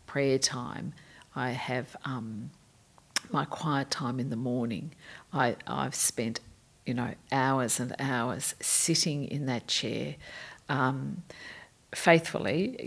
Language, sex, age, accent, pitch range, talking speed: English, female, 50-69, Australian, 130-155 Hz, 115 wpm